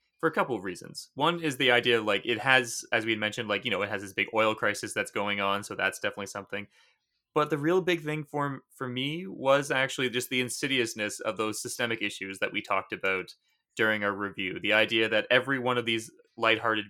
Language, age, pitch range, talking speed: English, 20-39, 105-125 Hz, 225 wpm